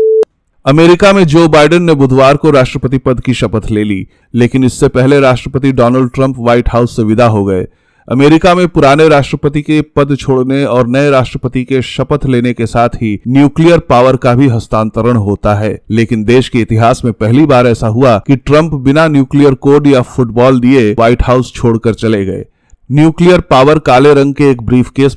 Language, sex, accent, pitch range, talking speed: English, male, Indian, 110-140 Hz, 125 wpm